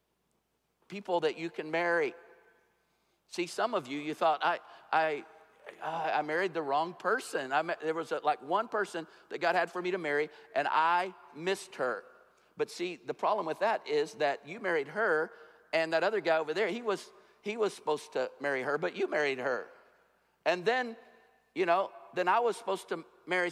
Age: 50-69